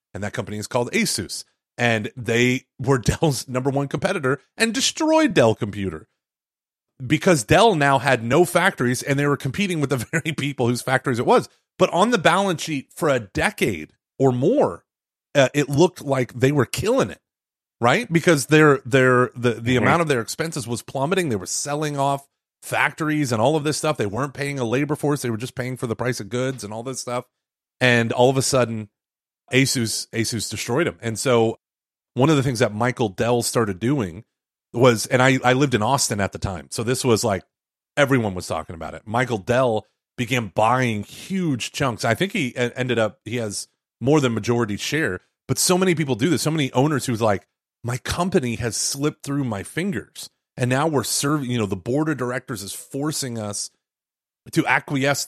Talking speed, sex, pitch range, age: 200 wpm, male, 115-145 Hz, 30-49